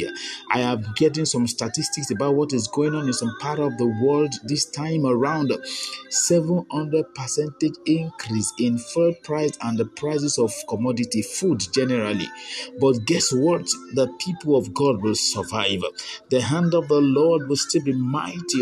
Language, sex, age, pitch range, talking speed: English, male, 50-69, 135-175 Hz, 160 wpm